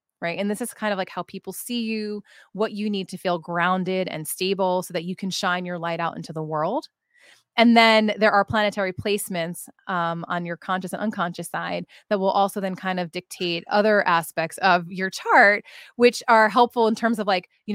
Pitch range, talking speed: 180-220 Hz, 215 wpm